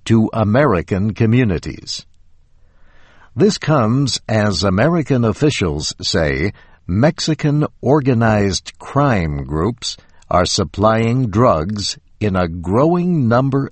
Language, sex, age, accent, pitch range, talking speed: English, male, 60-79, American, 85-125 Hz, 90 wpm